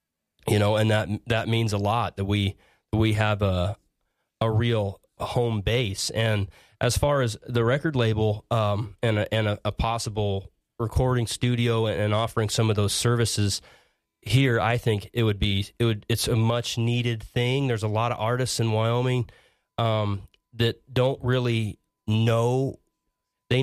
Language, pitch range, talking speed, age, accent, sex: English, 105-120 Hz, 165 wpm, 30-49, American, male